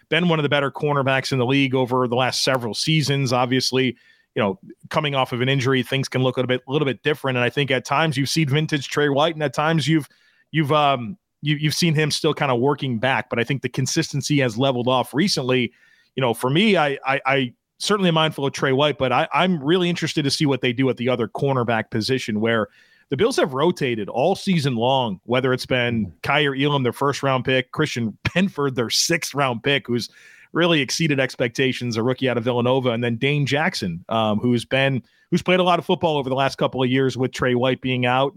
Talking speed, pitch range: 230 wpm, 125-155 Hz